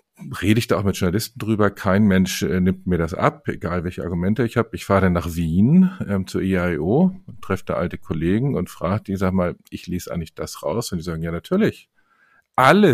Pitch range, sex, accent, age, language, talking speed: 90-115 Hz, male, German, 50-69, German, 220 wpm